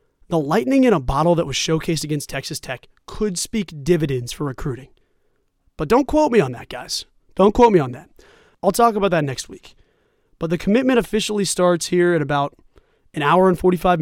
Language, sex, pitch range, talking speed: English, male, 155-200 Hz, 195 wpm